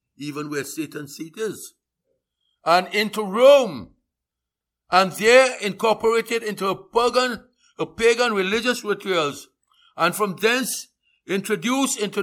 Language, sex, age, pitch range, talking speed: English, male, 60-79, 145-215 Hz, 115 wpm